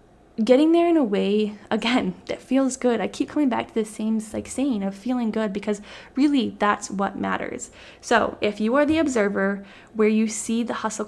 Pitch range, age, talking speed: 195-245 Hz, 10-29, 195 wpm